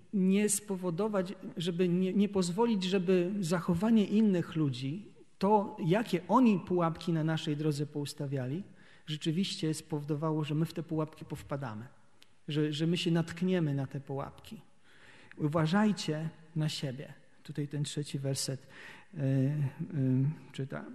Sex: male